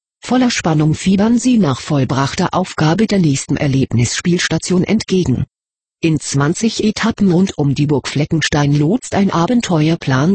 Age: 40-59